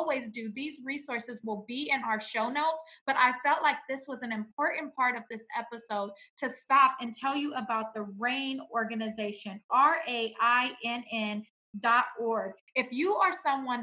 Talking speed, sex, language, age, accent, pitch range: 155 wpm, female, English, 20-39, American, 225-275 Hz